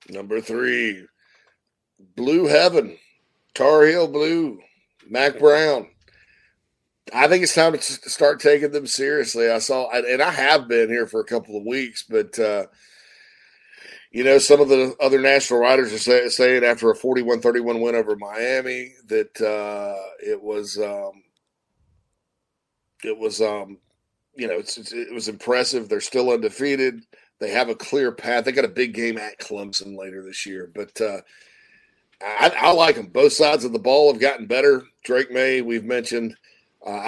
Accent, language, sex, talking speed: American, English, male, 165 wpm